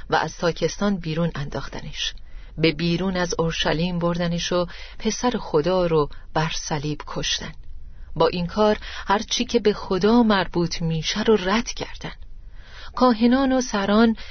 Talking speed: 140 wpm